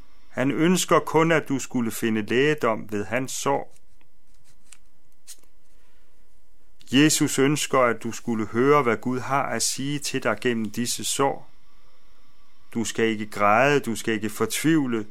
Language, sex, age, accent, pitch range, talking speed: Danish, male, 40-59, native, 110-140 Hz, 140 wpm